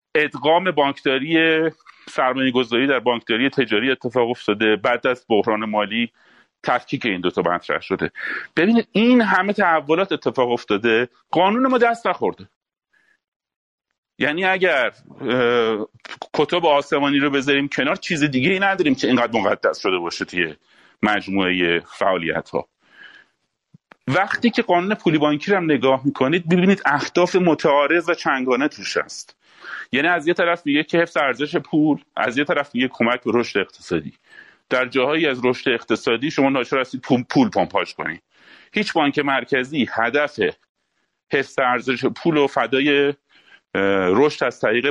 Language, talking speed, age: Persian, 135 wpm, 40-59